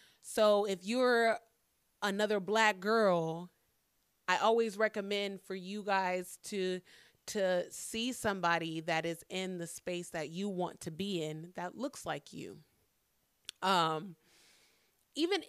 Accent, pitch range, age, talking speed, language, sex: American, 175-220 Hz, 30-49, 130 wpm, English, female